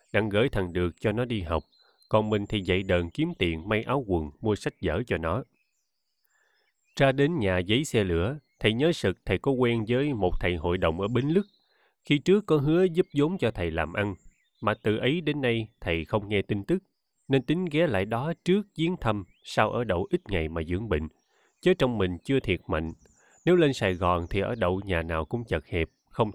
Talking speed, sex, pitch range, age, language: 225 wpm, male, 95-145 Hz, 20-39, Vietnamese